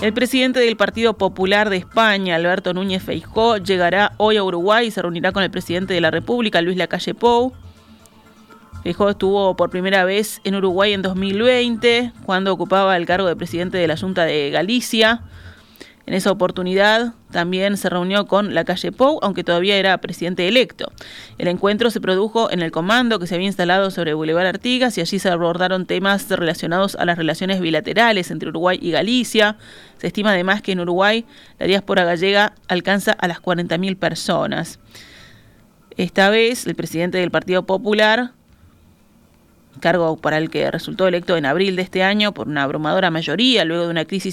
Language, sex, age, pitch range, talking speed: Spanish, female, 30-49, 175-210 Hz, 175 wpm